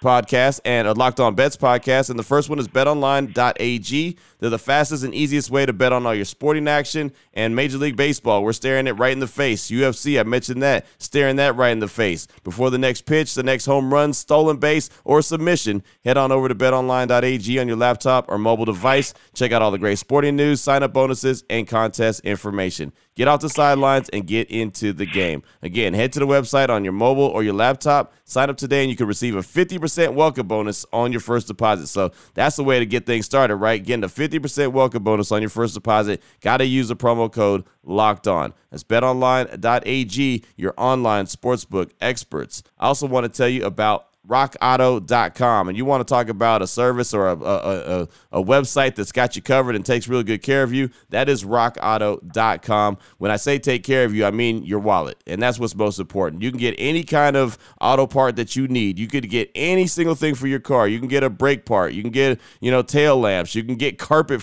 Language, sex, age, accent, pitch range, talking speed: English, male, 30-49, American, 110-135 Hz, 220 wpm